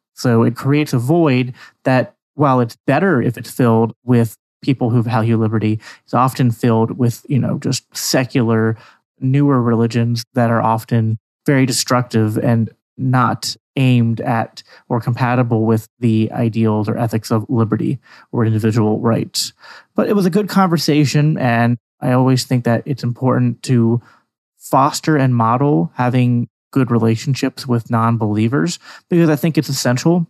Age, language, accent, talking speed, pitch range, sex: 30-49, English, American, 150 wpm, 115-135 Hz, male